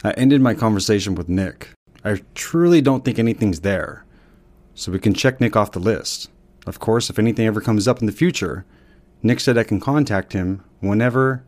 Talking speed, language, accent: 195 wpm, English, American